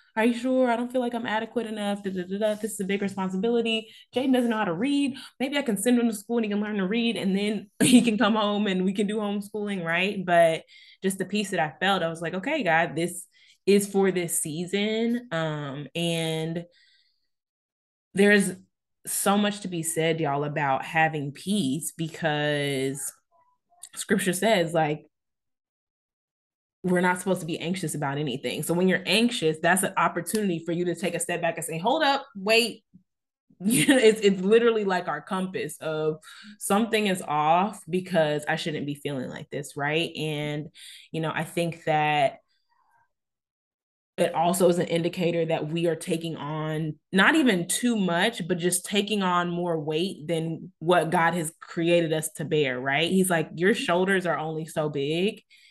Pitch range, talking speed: 160-215 Hz, 180 wpm